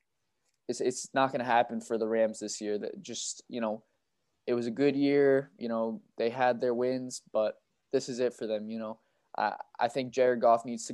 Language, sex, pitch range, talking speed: English, male, 115-125 Hz, 225 wpm